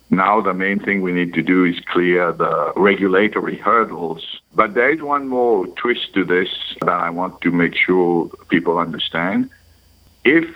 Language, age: English, 60-79